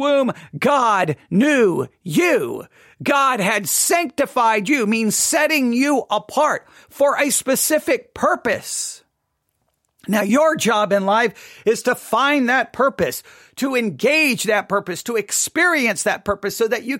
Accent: American